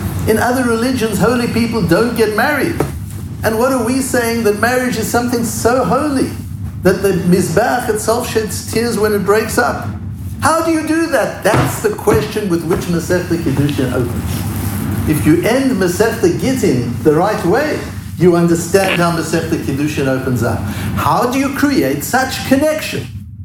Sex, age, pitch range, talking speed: male, 60-79, 115-180 Hz, 170 wpm